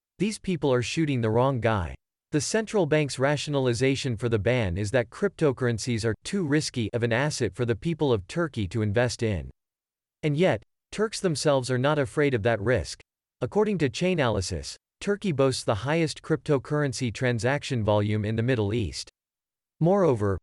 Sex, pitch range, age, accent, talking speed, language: male, 115-155 Hz, 40-59, American, 165 wpm, English